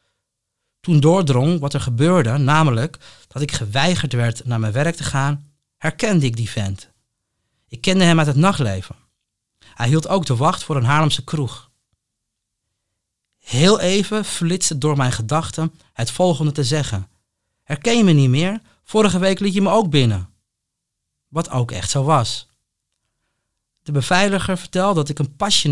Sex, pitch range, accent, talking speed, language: male, 115-150 Hz, Dutch, 160 wpm, Dutch